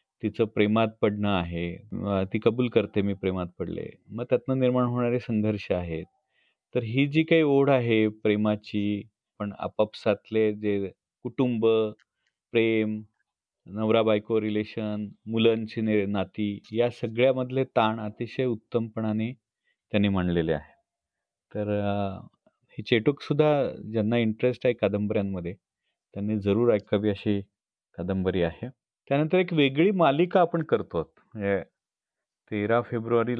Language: Marathi